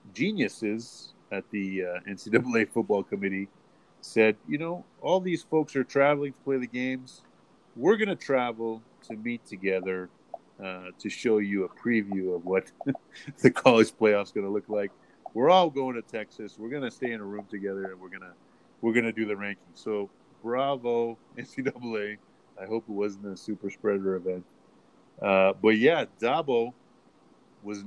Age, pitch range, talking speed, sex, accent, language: 30-49, 95-120 Hz, 170 wpm, male, American, English